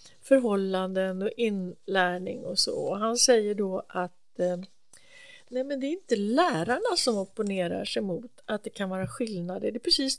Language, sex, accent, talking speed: English, female, Swedish, 160 wpm